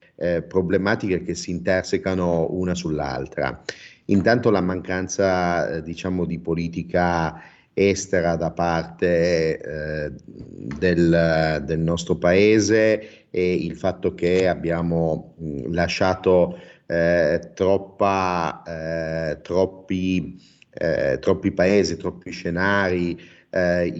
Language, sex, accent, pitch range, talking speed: Italian, male, native, 85-90 Hz, 100 wpm